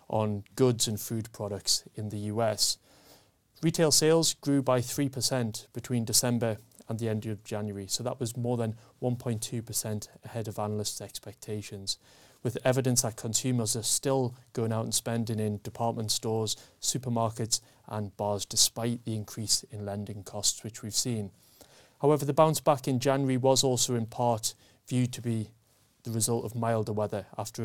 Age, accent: 30-49, British